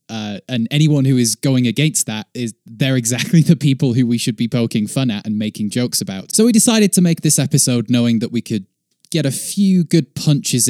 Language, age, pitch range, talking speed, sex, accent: English, 20-39, 115-165 Hz, 220 wpm, male, British